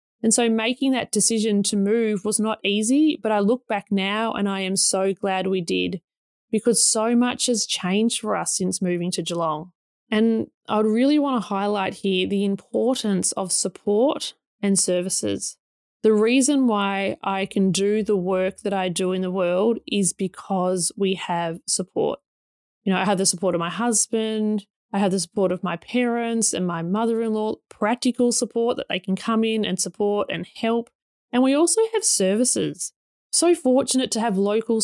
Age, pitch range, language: 20-39, 195-235 Hz, English